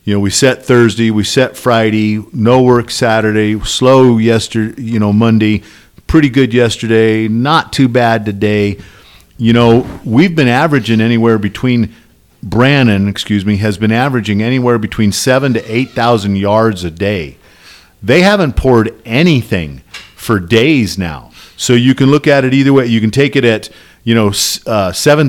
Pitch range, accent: 105-135 Hz, American